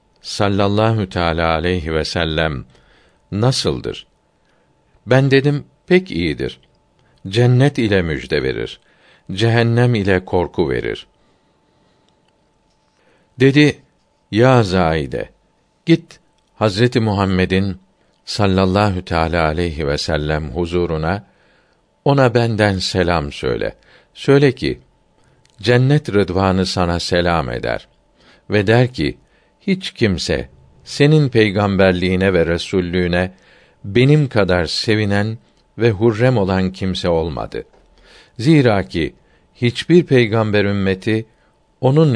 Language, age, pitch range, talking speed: Turkish, 50-69, 95-125 Hz, 90 wpm